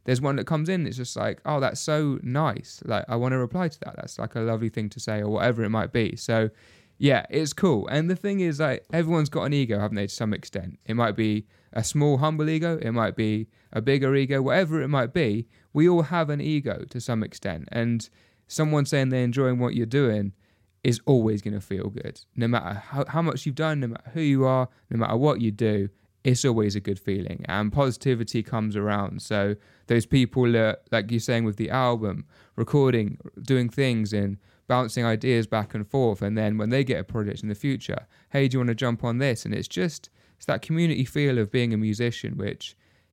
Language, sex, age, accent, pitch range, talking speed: English, male, 20-39, British, 110-140 Hz, 225 wpm